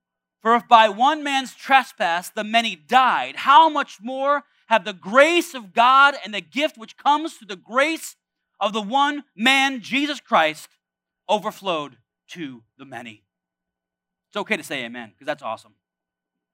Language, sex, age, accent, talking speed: English, male, 30-49, American, 155 wpm